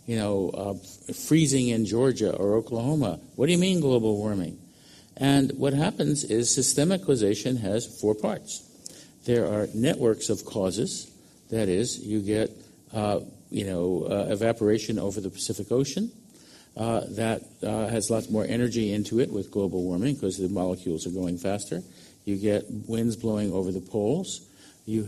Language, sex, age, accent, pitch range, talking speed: English, male, 50-69, American, 100-120 Hz, 160 wpm